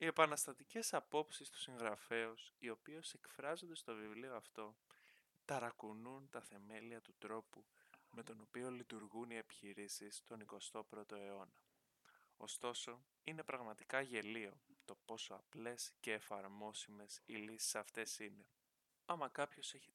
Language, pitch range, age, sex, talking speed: Greek, 105-135 Hz, 20-39, male, 120 wpm